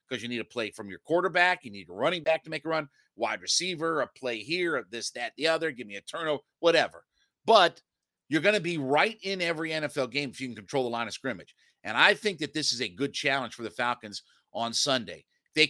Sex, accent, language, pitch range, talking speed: male, American, English, 130-175 Hz, 245 wpm